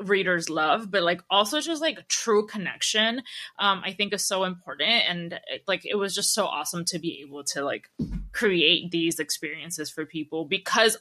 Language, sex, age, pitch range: English, female, 20-39, 165-205 Hz